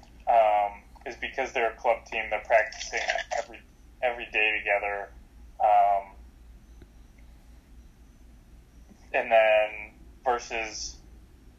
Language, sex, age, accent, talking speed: English, male, 20-39, American, 90 wpm